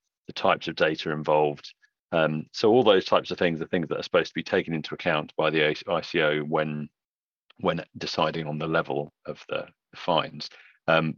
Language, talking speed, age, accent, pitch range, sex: English, 190 wpm, 40-59, British, 75-85 Hz, male